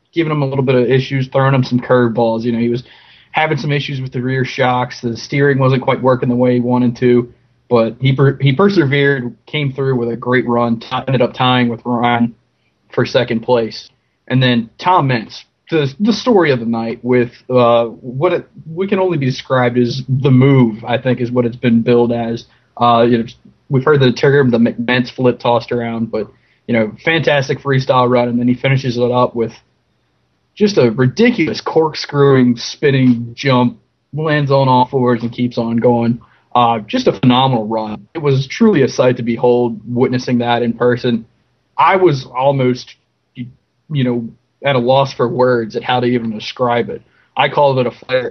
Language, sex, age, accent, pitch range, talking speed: English, male, 20-39, American, 120-135 Hz, 195 wpm